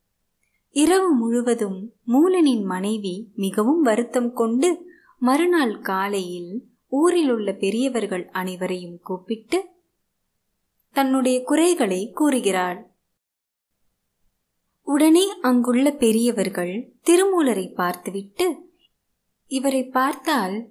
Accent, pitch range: native, 200-275 Hz